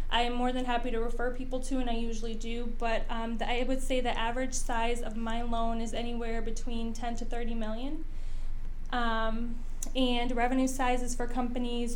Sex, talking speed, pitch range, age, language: female, 185 wpm, 230-250 Hz, 10-29, English